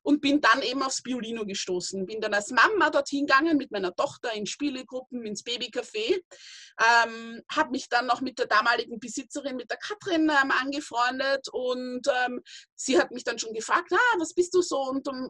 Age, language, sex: 20-39, German, female